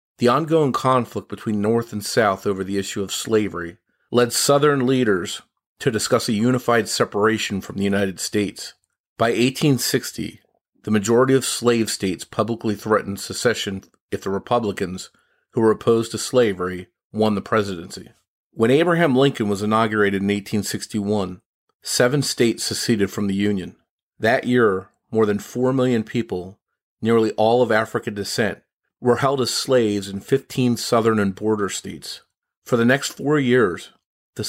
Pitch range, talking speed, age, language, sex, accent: 100-120 Hz, 150 wpm, 40-59, English, male, American